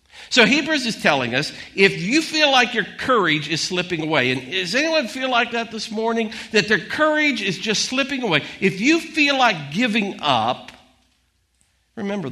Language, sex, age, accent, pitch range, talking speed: English, male, 50-69, American, 170-235 Hz, 175 wpm